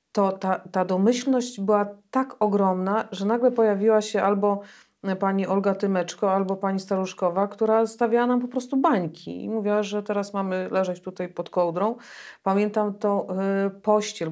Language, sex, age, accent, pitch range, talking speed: Polish, female, 40-59, native, 185-205 Hz, 155 wpm